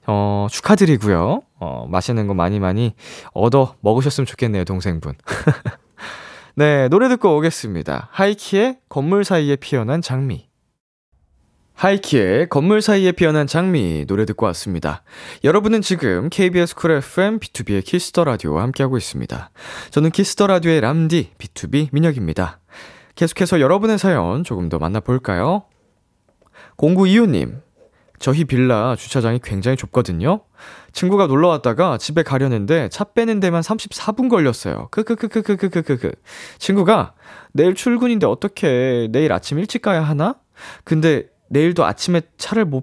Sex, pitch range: male, 115-180 Hz